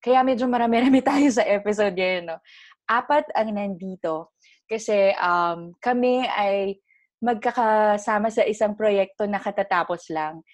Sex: female